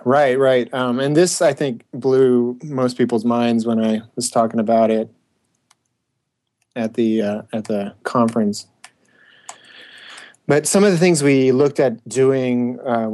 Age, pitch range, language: 30-49, 110-125 Hz, English